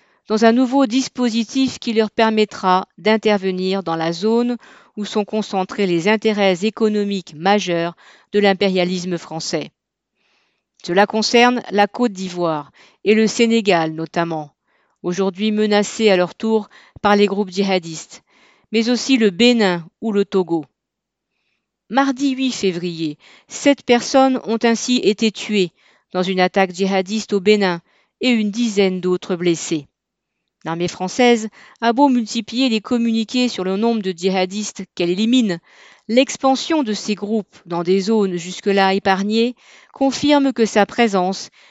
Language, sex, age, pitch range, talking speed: French, female, 40-59, 185-230 Hz, 135 wpm